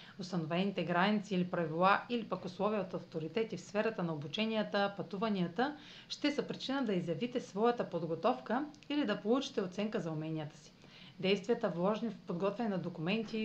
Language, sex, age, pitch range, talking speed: Bulgarian, female, 40-59, 175-230 Hz, 150 wpm